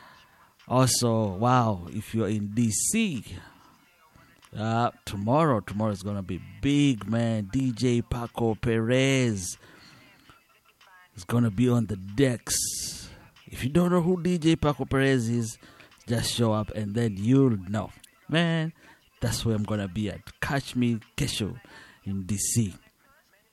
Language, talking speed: English, 140 wpm